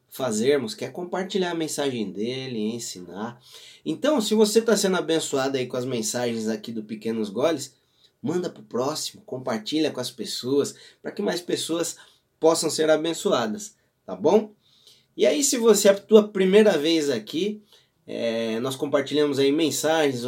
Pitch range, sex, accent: 125-180 Hz, male, Brazilian